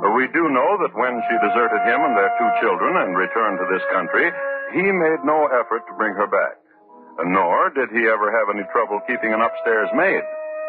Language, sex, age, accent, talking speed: English, male, 60-79, American, 200 wpm